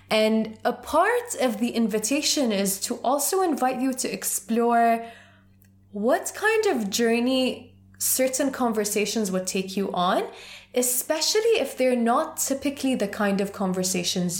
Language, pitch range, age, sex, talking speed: English, 185-255 Hz, 20-39, female, 135 wpm